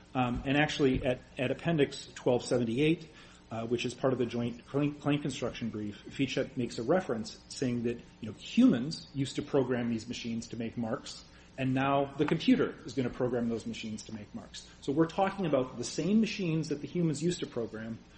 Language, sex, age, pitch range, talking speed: English, male, 30-49, 115-145 Hz, 200 wpm